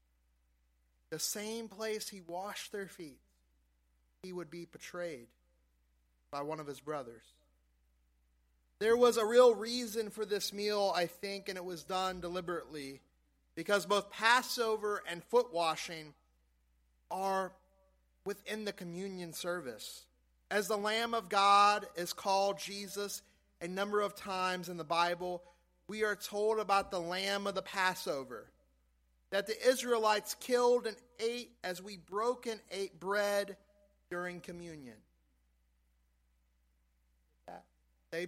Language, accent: English, American